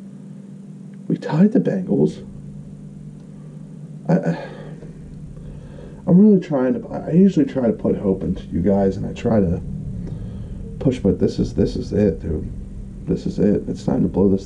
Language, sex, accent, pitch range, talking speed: English, male, American, 95-135 Hz, 160 wpm